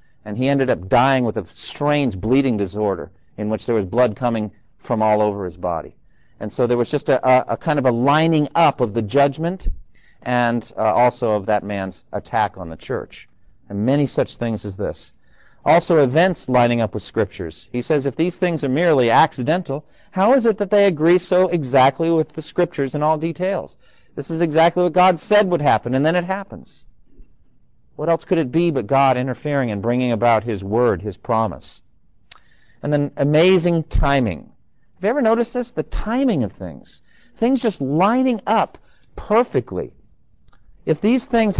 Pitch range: 120-180 Hz